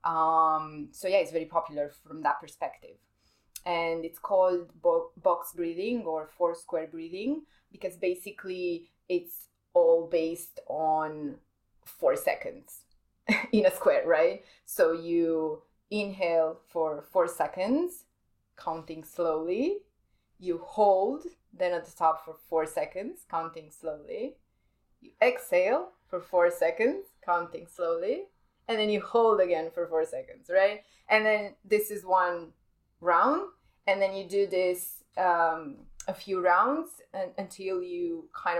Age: 20-39